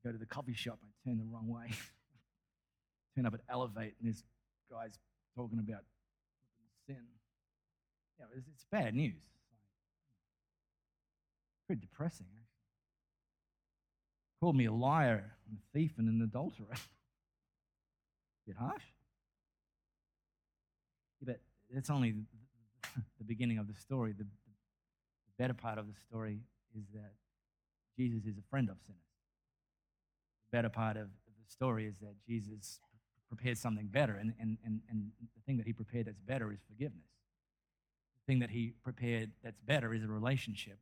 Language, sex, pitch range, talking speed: English, male, 110-130 Hz, 145 wpm